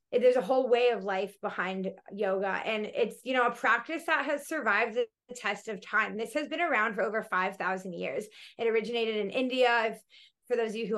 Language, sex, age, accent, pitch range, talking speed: English, female, 20-39, American, 210-250 Hz, 220 wpm